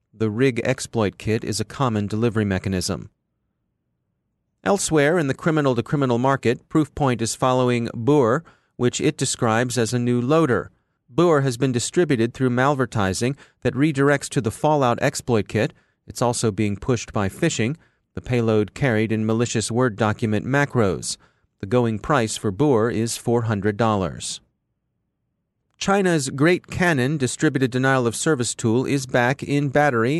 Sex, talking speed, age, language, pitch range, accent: male, 135 wpm, 30-49, English, 110-140 Hz, American